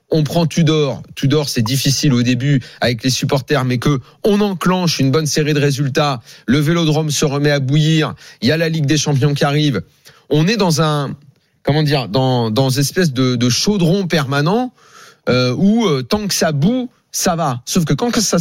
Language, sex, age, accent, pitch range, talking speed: French, male, 40-59, French, 120-160 Hz, 200 wpm